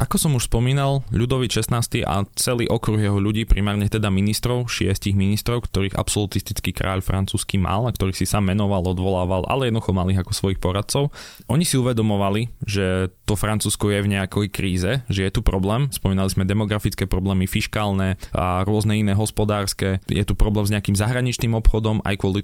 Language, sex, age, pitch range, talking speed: Slovak, male, 20-39, 100-125 Hz, 170 wpm